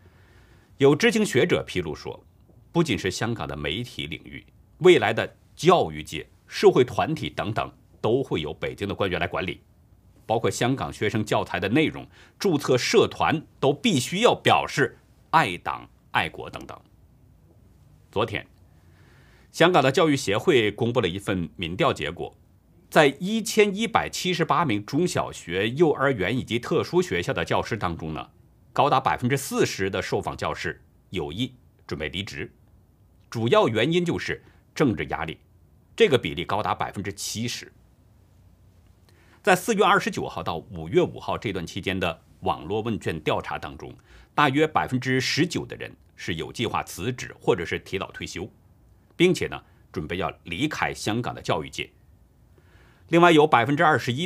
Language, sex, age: Chinese, male, 50-69